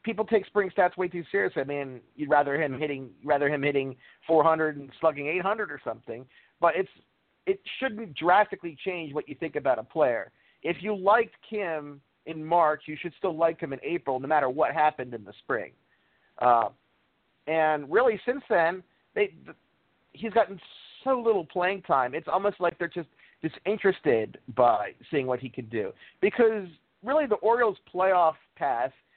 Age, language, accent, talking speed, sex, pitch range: 40-59, English, American, 175 wpm, male, 145-200 Hz